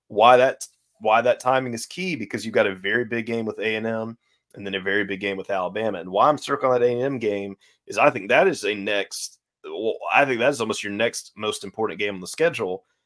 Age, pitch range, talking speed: 30-49, 95-110 Hz, 240 wpm